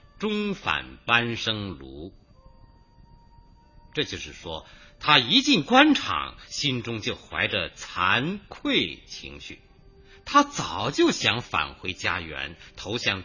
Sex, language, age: male, Chinese, 50-69